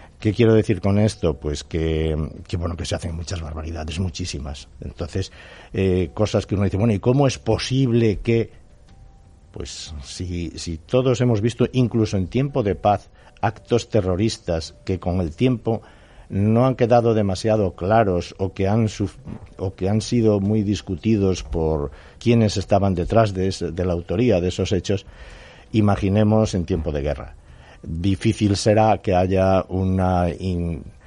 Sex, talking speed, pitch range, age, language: male, 160 wpm, 90-115 Hz, 60-79, Spanish